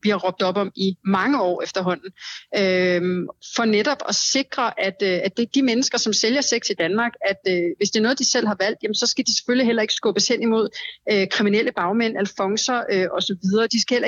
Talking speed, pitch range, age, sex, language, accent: 230 wpm, 195-230 Hz, 30-49, female, Danish, native